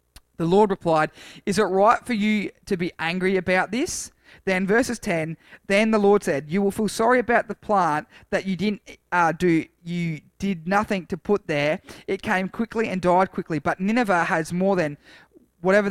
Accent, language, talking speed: Australian, English, 190 wpm